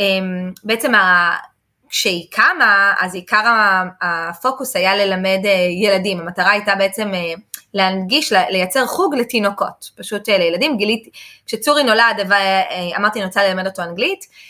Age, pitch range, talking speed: 20-39, 185-240 Hz, 115 wpm